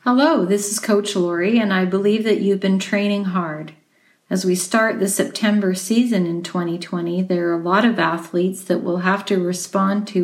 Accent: American